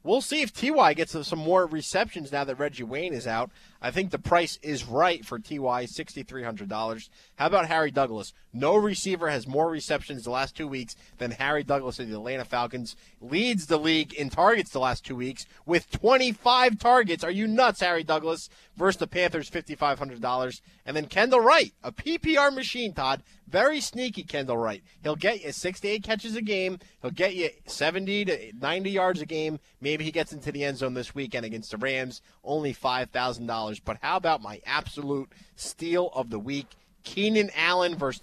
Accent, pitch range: American, 135-185 Hz